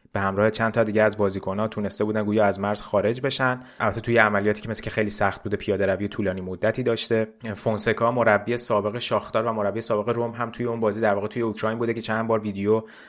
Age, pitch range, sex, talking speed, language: 20-39, 100-115 Hz, male, 220 wpm, Persian